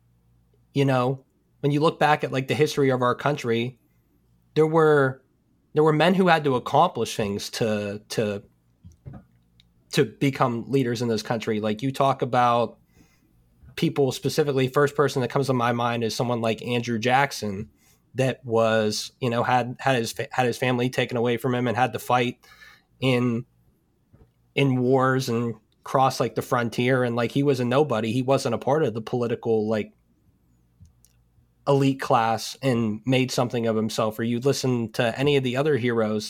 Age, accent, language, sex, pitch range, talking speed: 20-39, American, English, male, 110-135 Hz, 175 wpm